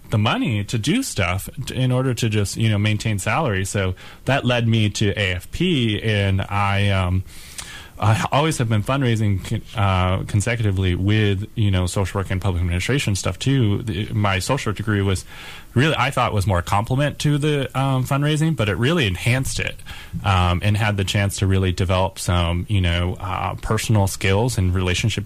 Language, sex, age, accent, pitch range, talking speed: English, male, 20-39, American, 95-110 Hz, 180 wpm